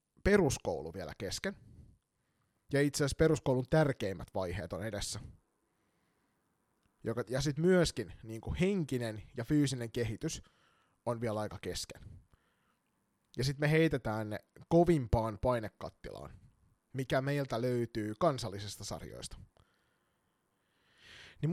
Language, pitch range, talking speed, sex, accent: Finnish, 110-160 Hz, 95 wpm, male, native